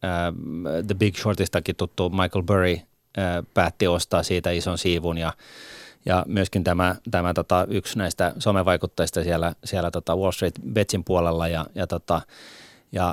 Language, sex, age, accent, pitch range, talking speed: Finnish, male, 30-49, native, 90-110 Hz, 145 wpm